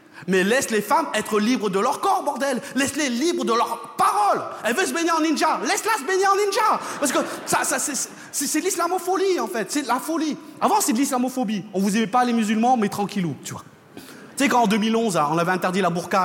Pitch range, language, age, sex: 210-320 Hz, French, 30-49, male